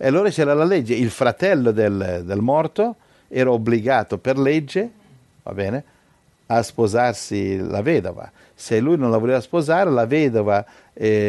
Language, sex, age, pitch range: Italian, male, 60-79, 105-135 Hz